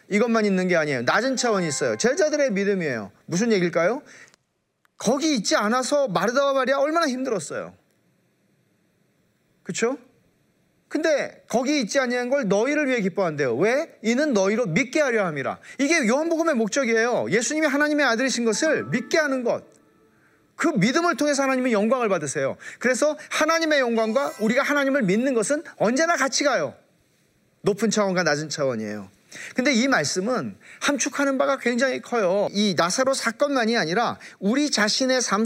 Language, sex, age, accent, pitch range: Korean, male, 40-59, native, 195-275 Hz